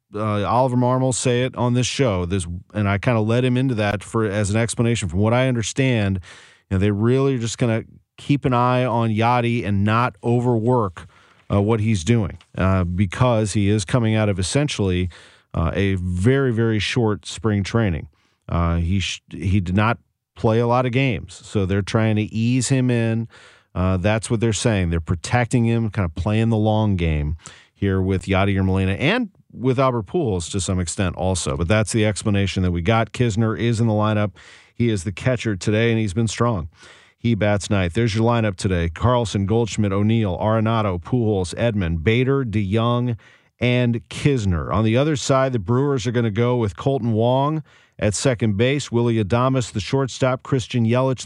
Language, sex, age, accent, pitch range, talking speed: English, male, 40-59, American, 100-125 Hz, 195 wpm